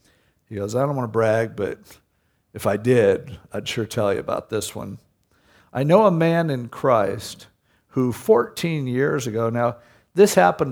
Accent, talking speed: American, 175 wpm